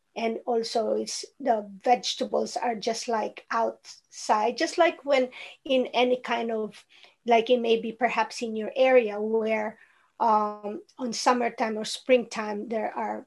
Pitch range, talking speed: 230-280 Hz, 145 wpm